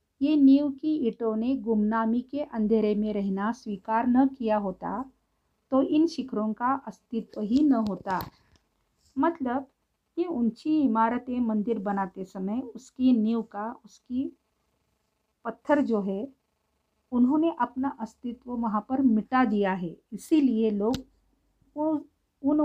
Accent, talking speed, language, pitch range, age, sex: native, 125 wpm, Marathi, 210-270 Hz, 50-69, female